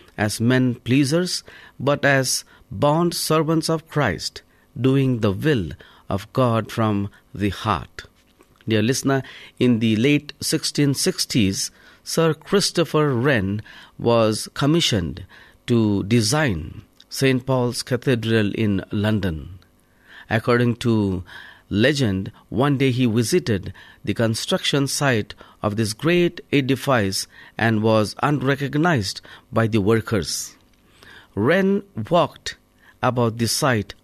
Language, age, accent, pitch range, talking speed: English, 50-69, Indian, 110-145 Hz, 105 wpm